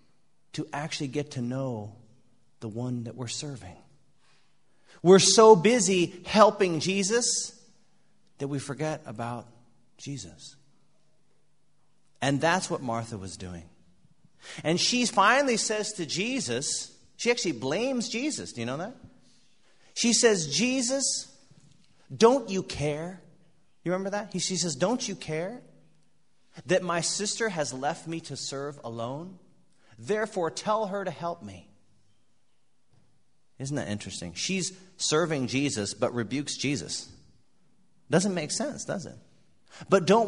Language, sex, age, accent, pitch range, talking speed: Danish, male, 40-59, American, 130-195 Hz, 125 wpm